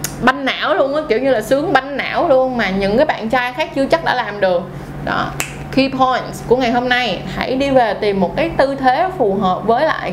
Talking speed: 245 wpm